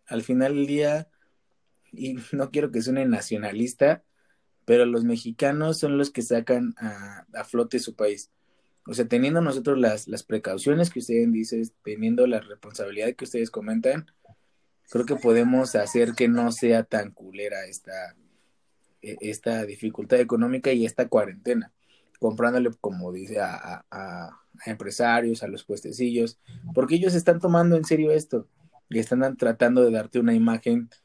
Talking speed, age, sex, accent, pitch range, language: 150 wpm, 20-39, male, Mexican, 115-140 Hz, Spanish